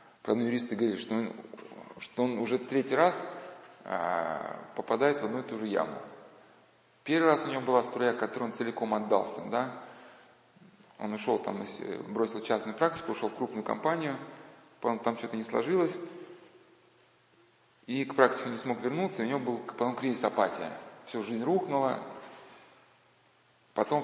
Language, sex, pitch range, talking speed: Russian, male, 115-135 Hz, 150 wpm